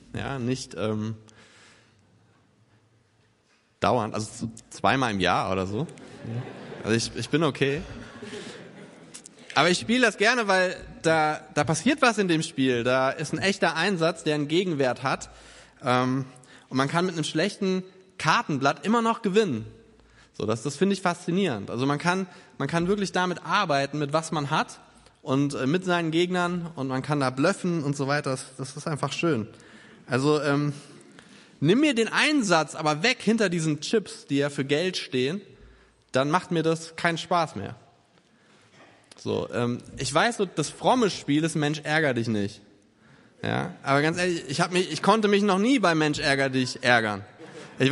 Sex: male